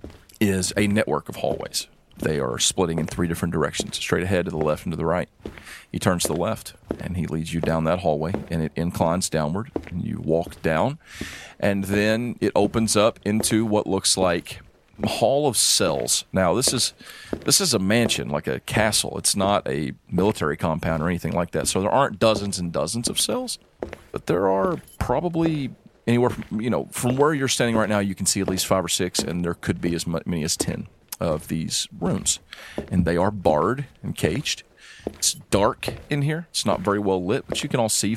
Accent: American